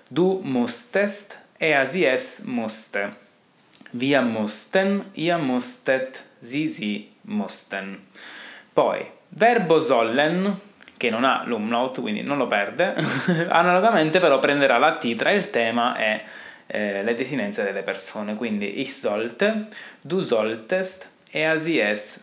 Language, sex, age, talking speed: Italian, male, 20-39, 120 wpm